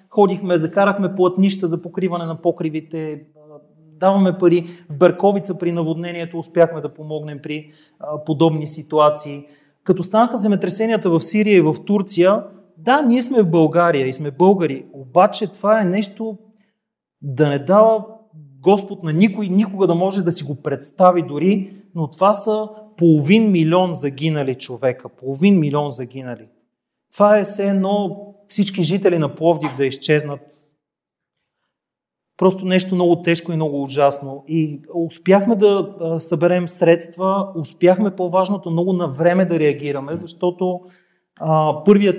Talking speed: 135 wpm